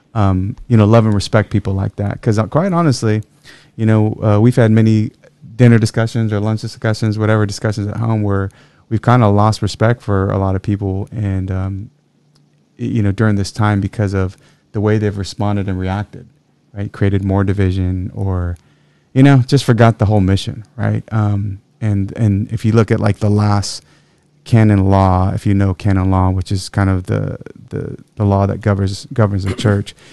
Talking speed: 190 wpm